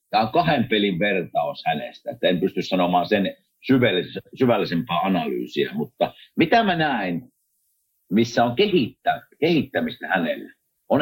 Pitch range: 115-185 Hz